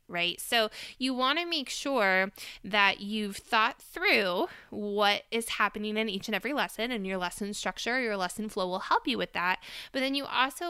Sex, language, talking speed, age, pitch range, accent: female, English, 195 wpm, 20-39, 190-240 Hz, American